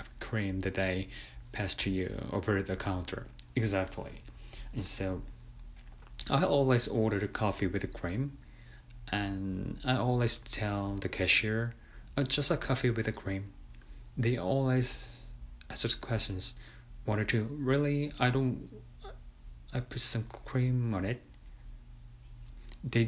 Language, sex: Korean, male